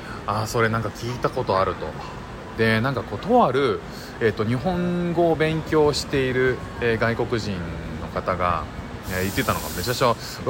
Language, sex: Japanese, male